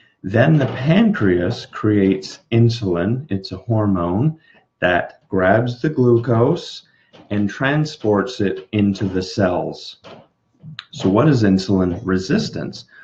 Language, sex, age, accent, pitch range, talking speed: English, male, 30-49, American, 95-120 Hz, 105 wpm